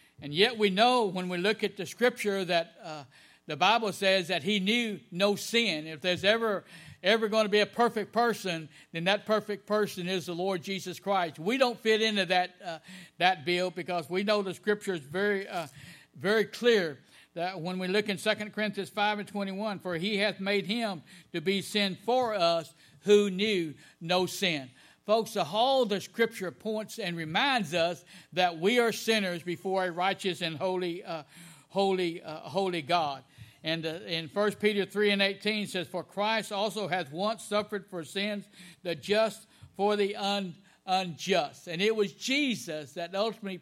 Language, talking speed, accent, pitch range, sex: English, 185 wpm, American, 175-210 Hz, male